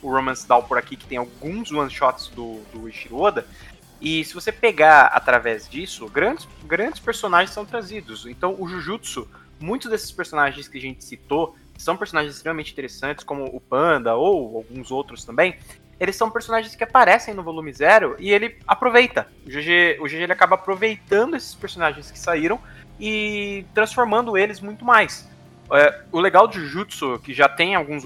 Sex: male